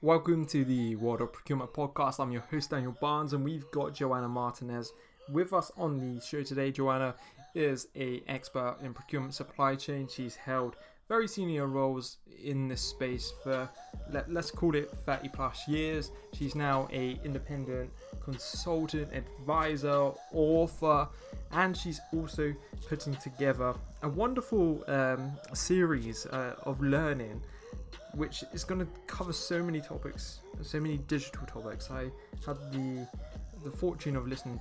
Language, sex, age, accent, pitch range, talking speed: English, male, 20-39, British, 125-150 Hz, 145 wpm